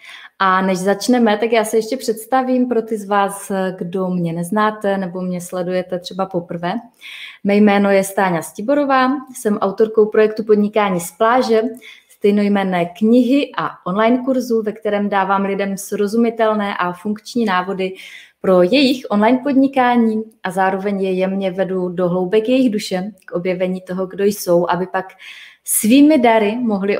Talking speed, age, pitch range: 150 wpm, 20-39, 185-230 Hz